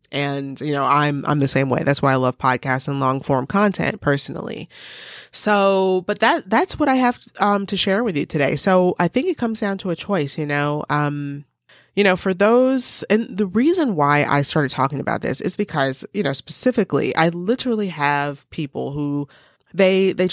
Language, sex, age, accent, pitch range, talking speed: English, female, 30-49, American, 150-210 Hz, 200 wpm